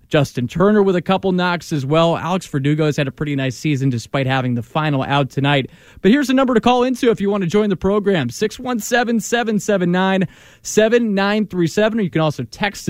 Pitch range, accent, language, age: 150-190 Hz, American, English, 20-39